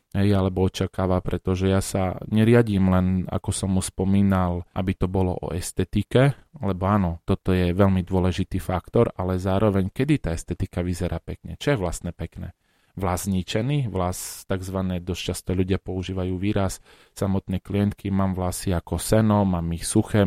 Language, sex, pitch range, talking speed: Slovak, male, 90-100 Hz, 155 wpm